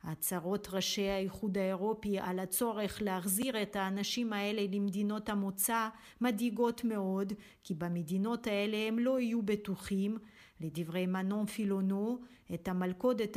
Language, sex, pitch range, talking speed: Hebrew, female, 195-230 Hz, 115 wpm